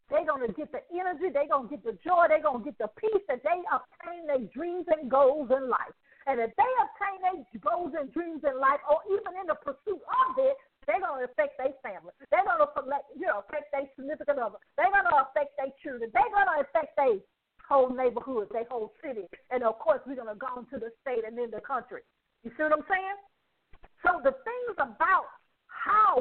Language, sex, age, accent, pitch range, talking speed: English, female, 50-69, American, 260-350 Hz, 225 wpm